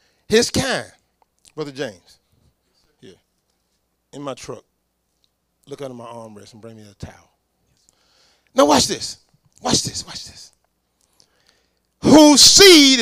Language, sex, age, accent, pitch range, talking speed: English, male, 40-59, American, 200-255 Hz, 120 wpm